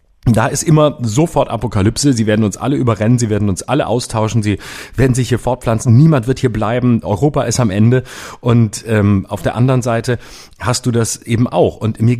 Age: 30-49